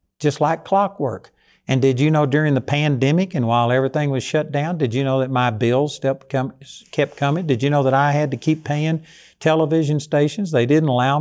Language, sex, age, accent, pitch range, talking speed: English, male, 60-79, American, 125-155 Hz, 215 wpm